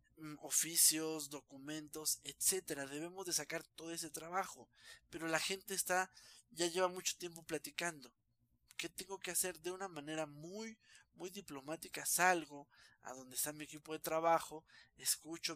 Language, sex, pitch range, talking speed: Spanish, male, 145-180 Hz, 145 wpm